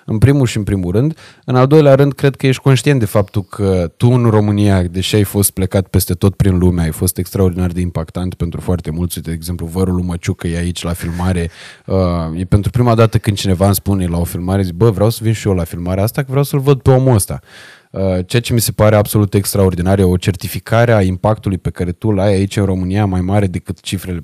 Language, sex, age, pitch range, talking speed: Romanian, male, 20-39, 95-135 Hz, 240 wpm